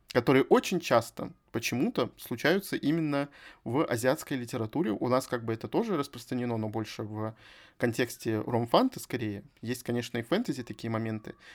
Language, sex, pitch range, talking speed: Russian, male, 120-155 Hz, 145 wpm